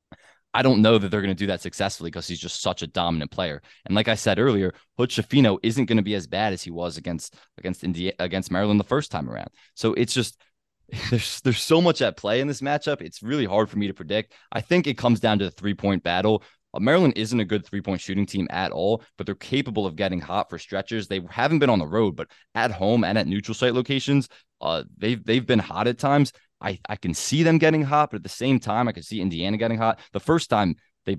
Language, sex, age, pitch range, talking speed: English, male, 20-39, 95-115 Hz, 250 wpm